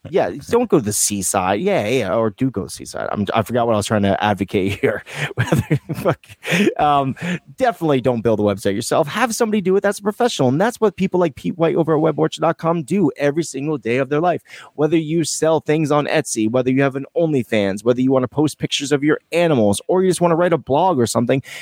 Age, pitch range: 30-49, 110-165 Hz